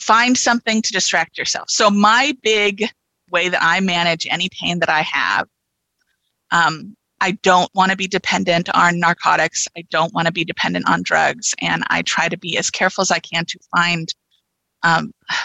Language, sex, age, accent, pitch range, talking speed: English, female, 30-49, American, 170-210 Hz, 185 wpm